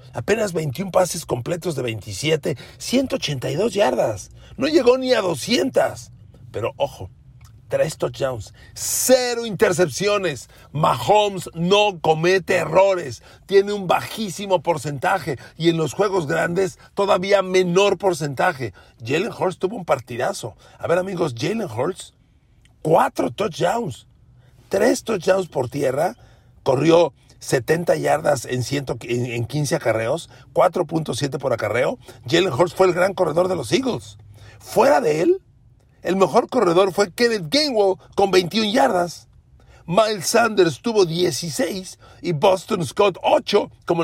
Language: Spanish